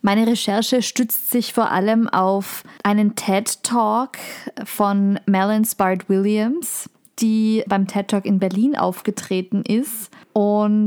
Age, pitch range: 20-39, 195-230 Hz